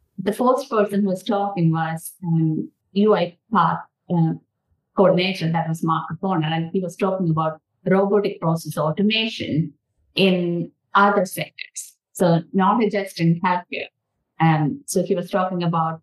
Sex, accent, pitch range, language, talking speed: female, Indian, 170-220 Hz, English, 145 wpm